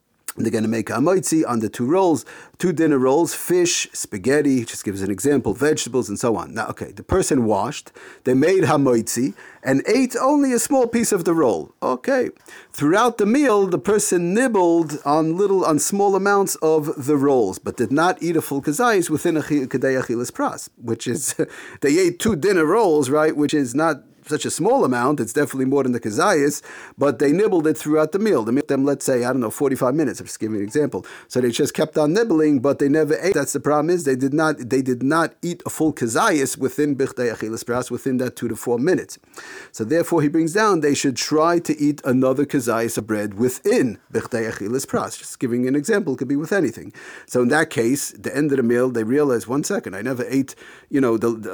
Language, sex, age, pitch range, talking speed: English, male, 40-59, 125-160 Hz, 215 wpm